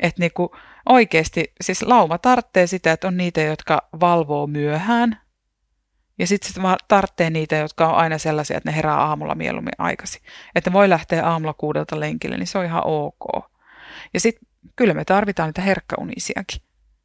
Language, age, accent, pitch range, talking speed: Finnish, 30-49, native, 155-185 Hz, 165 wpm